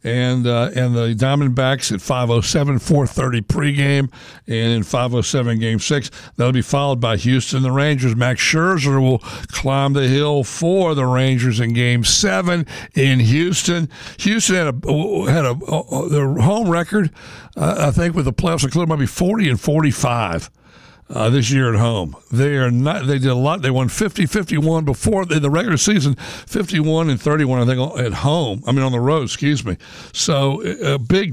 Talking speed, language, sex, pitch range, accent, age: 180 wpm, English, male, 115-145 Hz, American, 60-79